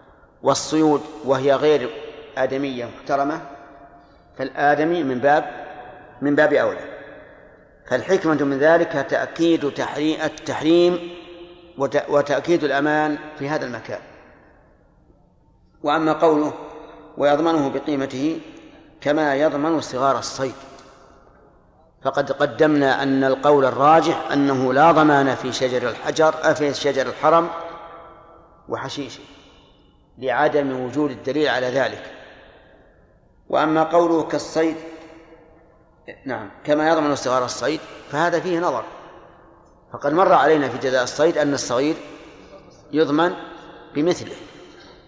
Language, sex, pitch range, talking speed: Arabic, male, 135-160 Hz, 95 wpm